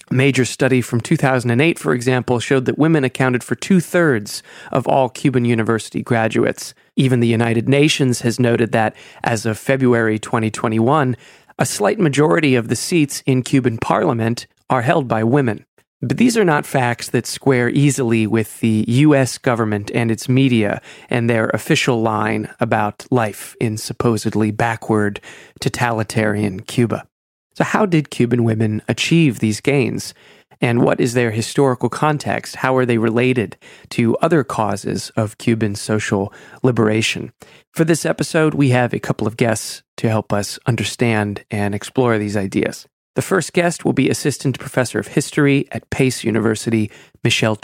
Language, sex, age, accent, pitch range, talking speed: English, male, 30-49, American, 110-140 Hz, 155 wpm